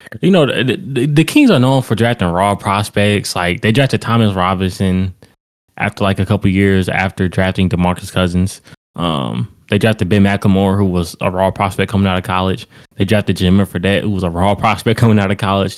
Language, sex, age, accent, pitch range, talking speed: English, male, 20-39, American, 95-115 Hz, 200 wpm